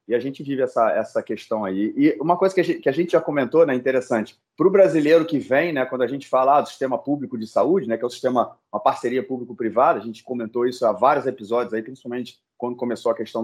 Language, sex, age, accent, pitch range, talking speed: Portuguese, male, 30-49, Brazilian, 120-155 Hz, 255 wpm